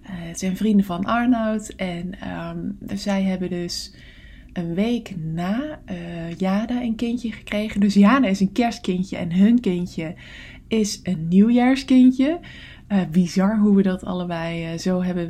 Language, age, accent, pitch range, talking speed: English, 20-39, Dutch, 180-235 Hz, 150 wpm